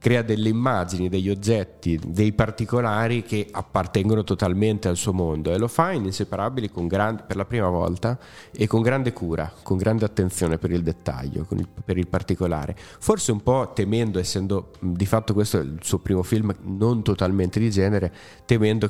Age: 30-49